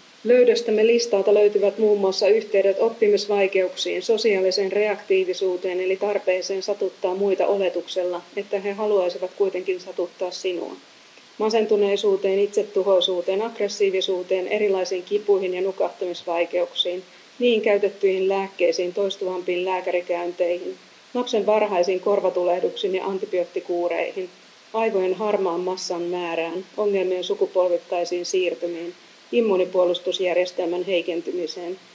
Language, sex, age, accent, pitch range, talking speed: Finnish, female, 30-49, native, 180-205 Hz, 85 wpm